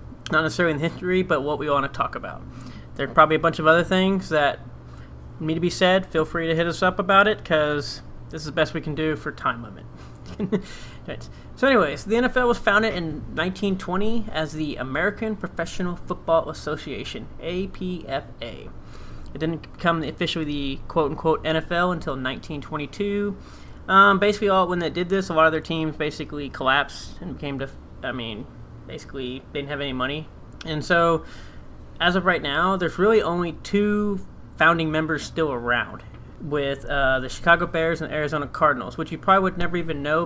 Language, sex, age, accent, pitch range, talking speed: English, male, 30-49, American, 140-180 Hz, 180 wpm